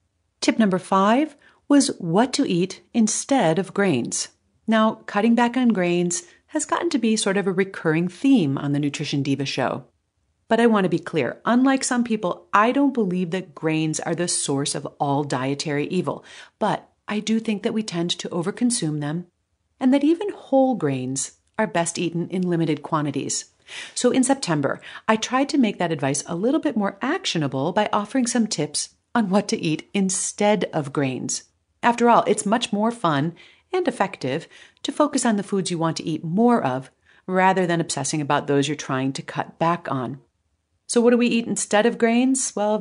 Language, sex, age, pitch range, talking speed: English, female, 40-59, 155-230 Hz, 190 wpm